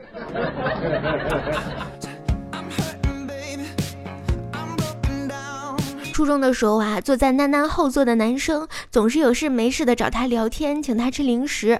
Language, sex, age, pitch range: Chinese, female, 20-39, 235-295 Hz